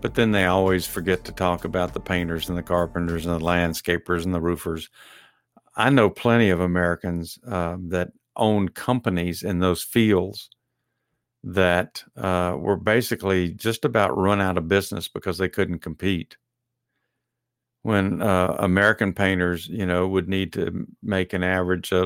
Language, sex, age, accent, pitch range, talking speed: English, male, 50-69, American, 90-115 Hz, 160 wpm